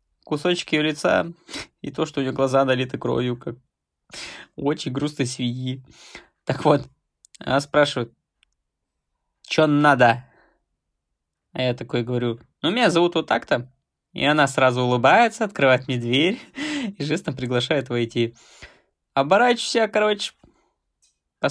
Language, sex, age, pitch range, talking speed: Russian, male, 20-39, 120-165 Hz, 125 wpm